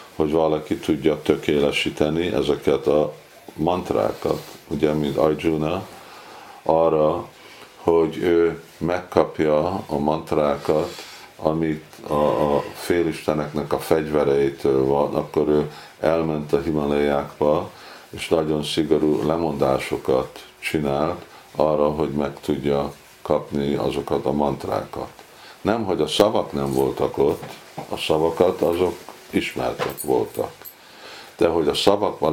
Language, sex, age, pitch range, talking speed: Hungarian, male, 50-69, 70-80 Hz, 105 wpm